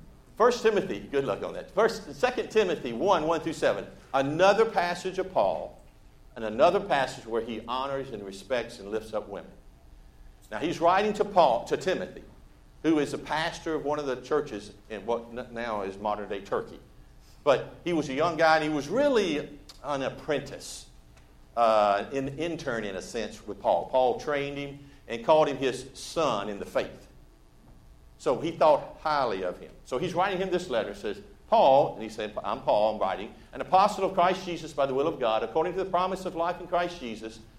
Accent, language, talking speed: American, English, 195 wpm